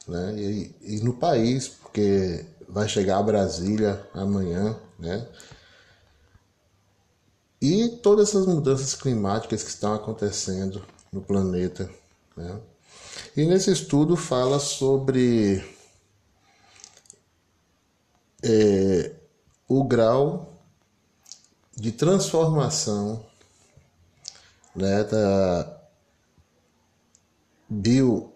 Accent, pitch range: Brazilian, 100-130 Hz